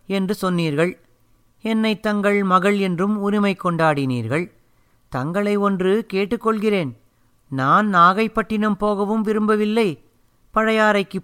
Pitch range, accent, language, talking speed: 130-205 Hz, native, Tamil, 85 wpm